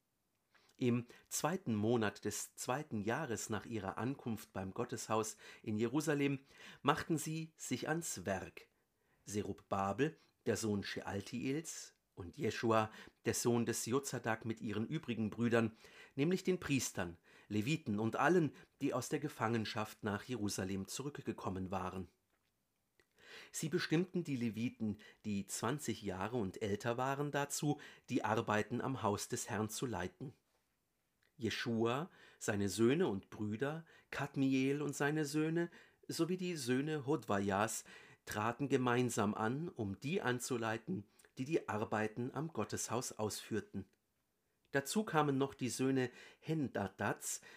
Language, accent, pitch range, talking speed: German, German, 105-140 Hz, 120 wpm